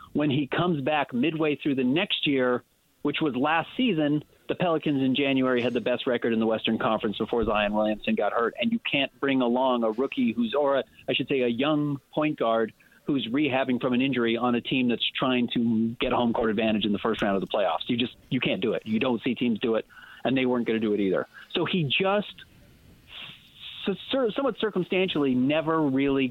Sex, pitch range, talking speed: male, 115-165 Hz, 215 wpm